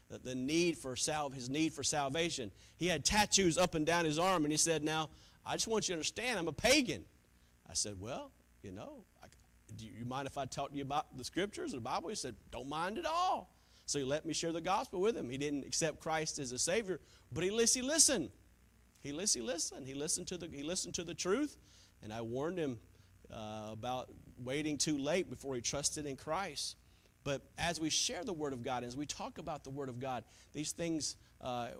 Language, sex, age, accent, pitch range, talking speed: English, male, 40-59, American, 130-180 Hz, 225 wpm